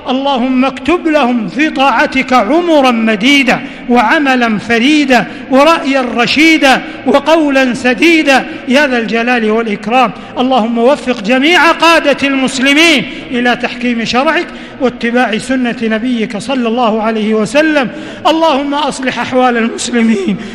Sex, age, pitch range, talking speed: male, 50-69, 245-310 Hz, 105 wpm